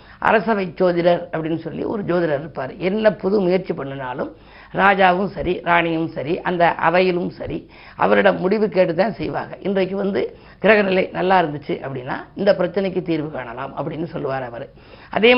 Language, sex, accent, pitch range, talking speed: Tamil, female, native, 165-200 Hz, 140 wpm